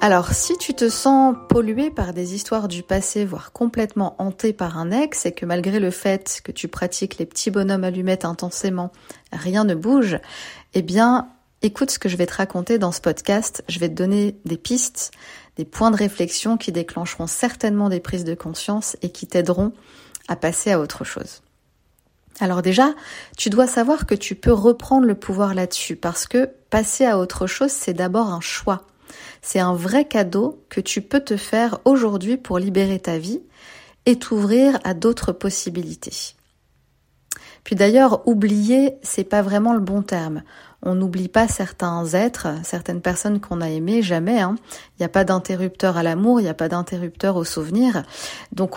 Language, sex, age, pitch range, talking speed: French, female, 40-59, 180-230 Hz, 180 wpm